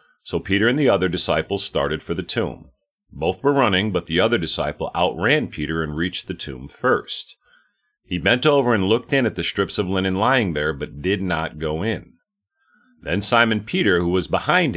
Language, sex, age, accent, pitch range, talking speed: English, male, 40-59, American, 85-120 Hz, 195 wpm